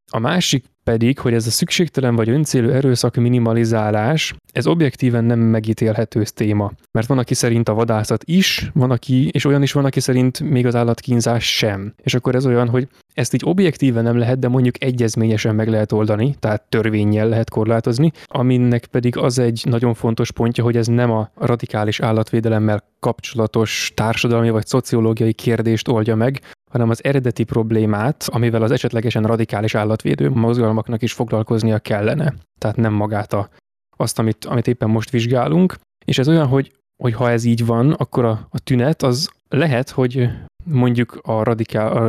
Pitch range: 110-130 Hz